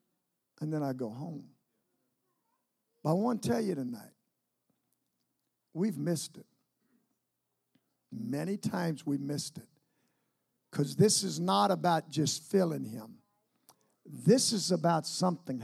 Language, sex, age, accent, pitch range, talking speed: English, male, 50-69, American, 190-300 Hz, 125 wpm